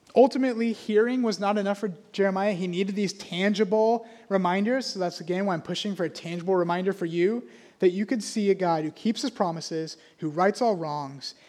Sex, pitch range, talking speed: male, 170-220 Hz, 200 wpm